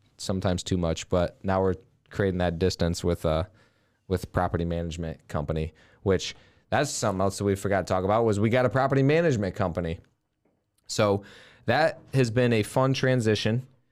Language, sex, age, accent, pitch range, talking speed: English, male, 20-39, American, 100-120 Hz, 175 wpm